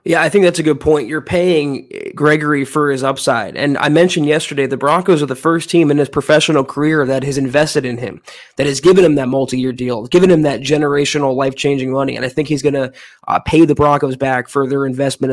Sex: male